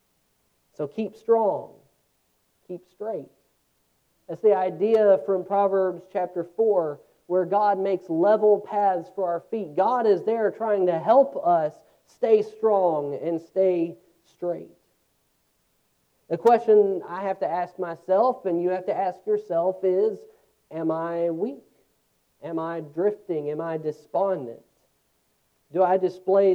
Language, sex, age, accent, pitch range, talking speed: English, male, 40-59, American, 170-225 Hz, 130 wpm